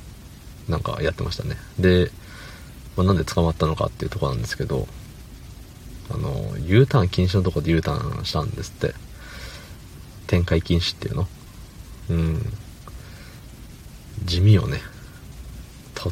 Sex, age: male, 40-59